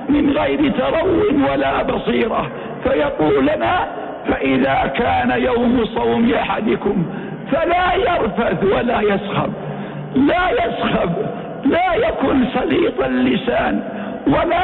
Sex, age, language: male, 60-79, Arabic